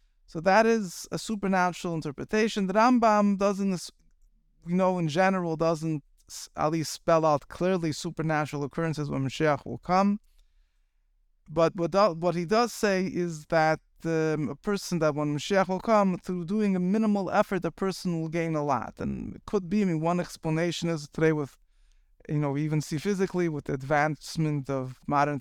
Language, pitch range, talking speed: English, 145-185 Hz, 175 wpm